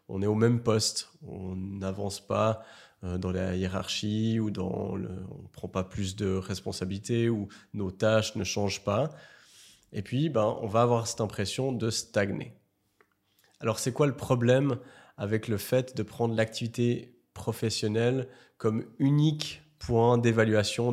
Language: French